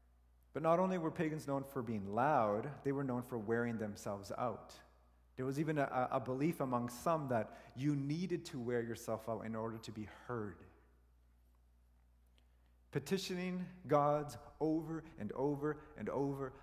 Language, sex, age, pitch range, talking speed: English, male, 30-49, 100-140 Hz, 155 wpm